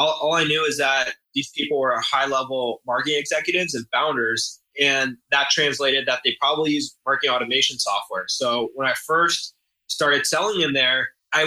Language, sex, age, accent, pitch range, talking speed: English, male, 20-39, American, 135-175 Hz, 175 wpm